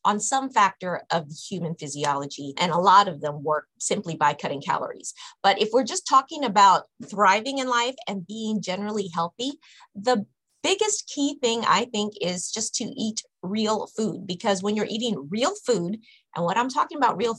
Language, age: English, 30-49